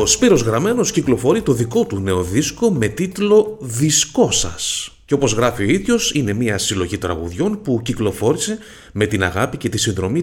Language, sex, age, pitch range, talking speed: Greek, male, 30-49, 100-155 Hz, 175 wpm